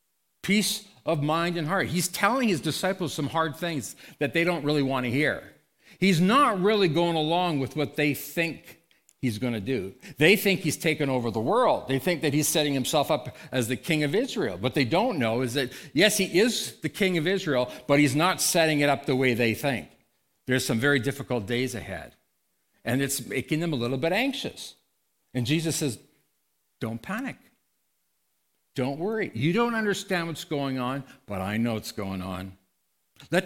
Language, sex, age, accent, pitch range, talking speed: English, male, 60-79, American, 130-190 Hz, 195 wpm